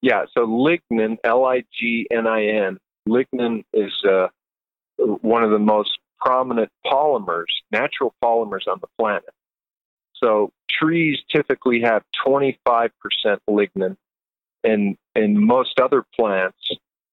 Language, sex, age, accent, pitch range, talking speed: English, male, 50-69, American, 110-135 Hz, 105 wpm